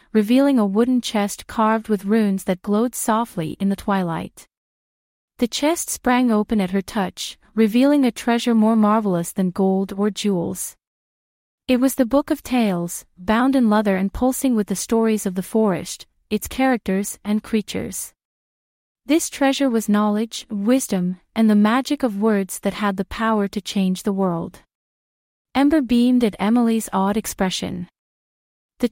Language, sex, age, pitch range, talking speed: English, female, 30-49, 195-245 Hz, 155 wpm